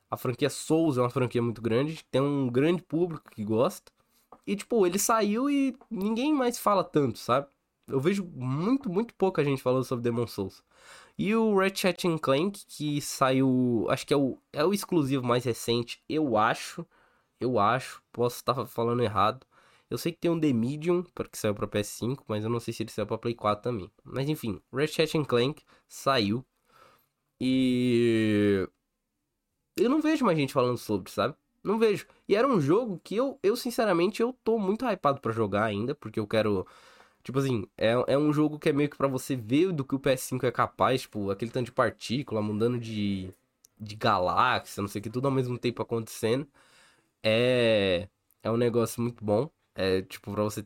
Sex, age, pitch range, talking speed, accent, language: male, 10-29, 110-155 Hz, 190 wpm, Brazilian, Portuguese